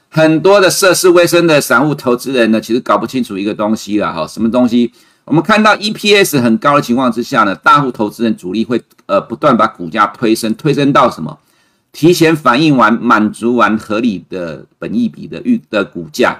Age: 50-69